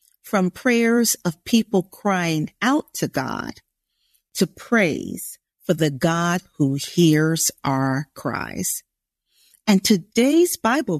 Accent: American